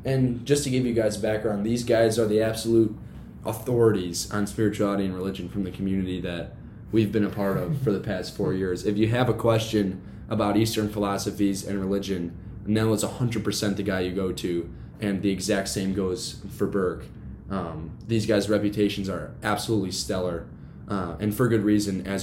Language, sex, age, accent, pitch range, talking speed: English, male, 10-29, American, 95-110 Hz, 185 wpm